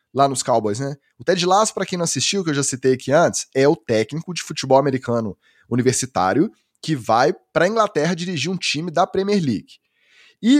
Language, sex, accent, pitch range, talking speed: Portuguese, male, Brazilian, 130-185 Hz, 200 wpm